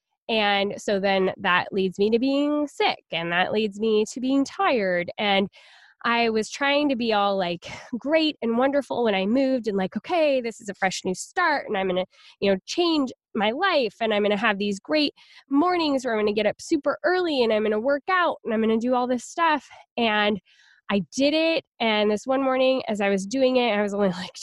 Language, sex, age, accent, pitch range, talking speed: English, female, 10-29, American, 205-270 Hz, 235 wpm